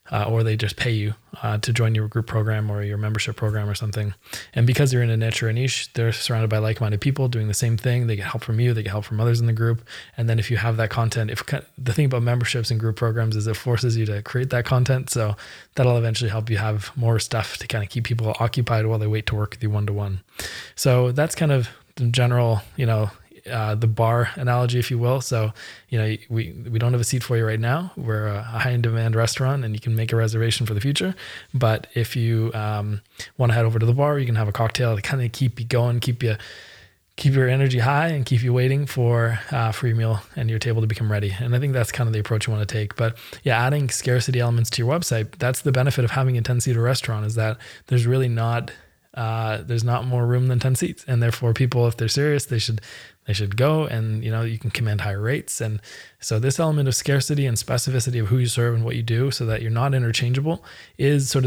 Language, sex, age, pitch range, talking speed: English, male, 20-39, 110-125 Hz, 260 wpm